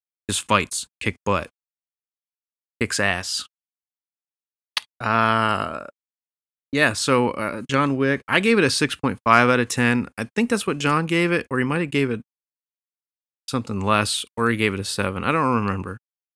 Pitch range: 100-140 Hz